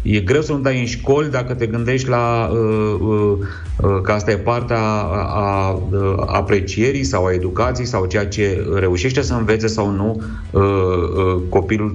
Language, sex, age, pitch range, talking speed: Romanian, male, 30-49, 95-120 Hz, 155 wpm